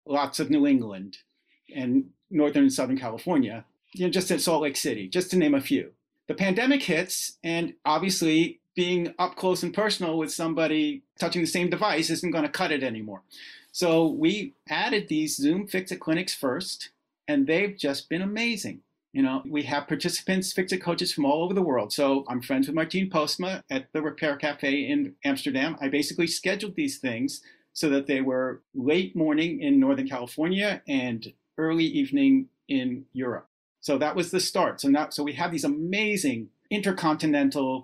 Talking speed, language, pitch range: 180 wpm, English, 145-230 Hz